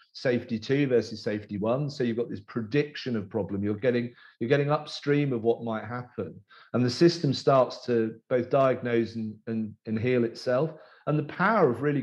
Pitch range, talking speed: 120-150 Hz, 190 wpm